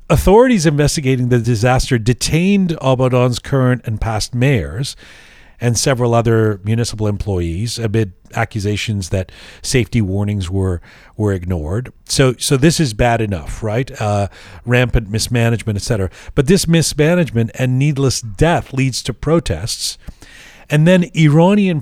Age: 40-59